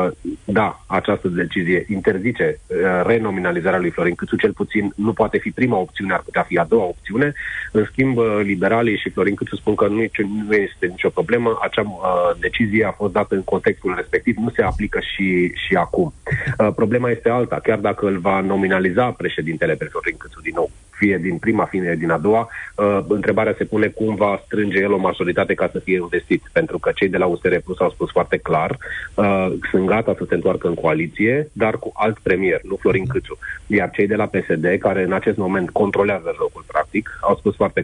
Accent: native